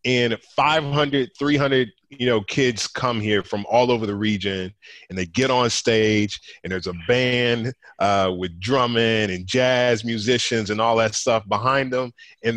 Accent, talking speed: American, 165 wpm